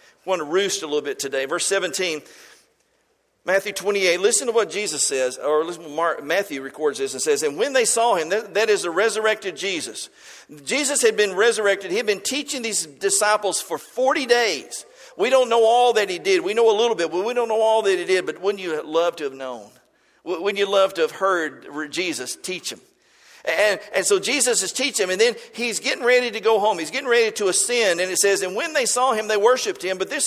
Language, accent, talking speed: English, American, 240 wpm